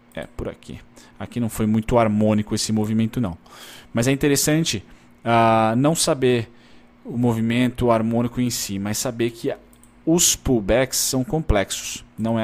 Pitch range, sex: 95-125 Hz, male